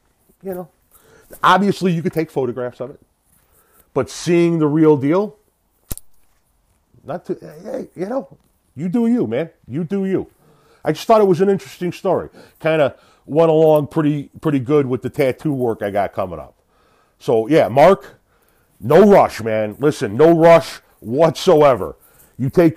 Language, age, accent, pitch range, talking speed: English, 40-59, American, 110-165 Hz, 160 wpm